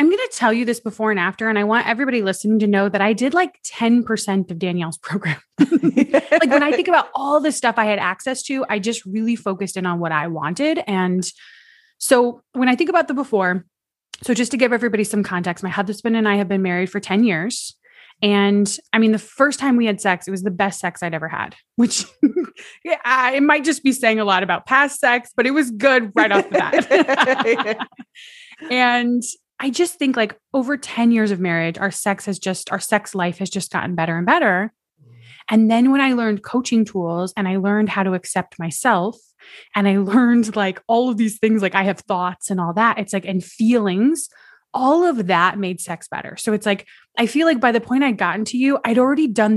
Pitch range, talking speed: 195-260 Hz, 225 wpm